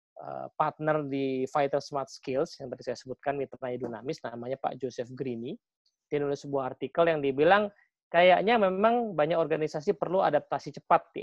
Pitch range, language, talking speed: 135-180 Hz, English, 155 wpm